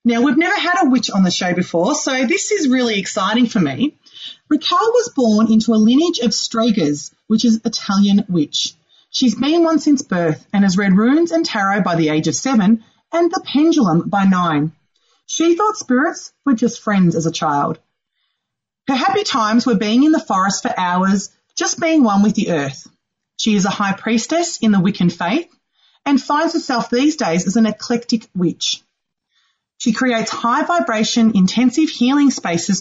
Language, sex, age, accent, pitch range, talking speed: English, female, 30-49, Australian, 195-265 Hz, 185 wpm